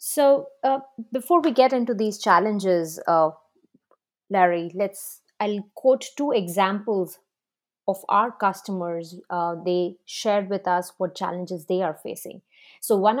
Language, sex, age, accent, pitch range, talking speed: English, female, 30-49, Indian, 180-225 Hz, 135 wpm